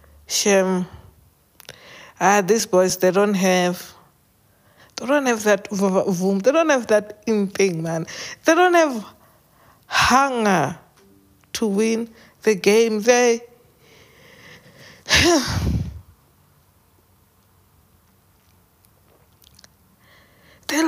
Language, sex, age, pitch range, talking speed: English, female, 60-79, 180-240 Hz, 85 wpm